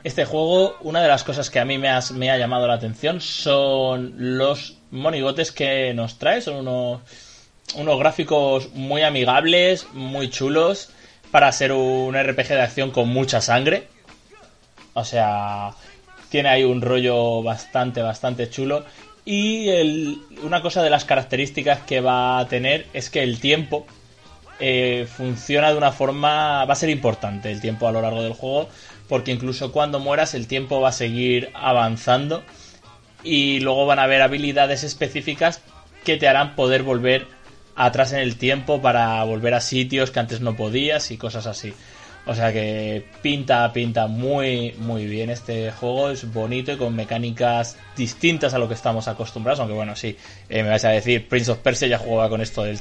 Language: Spanish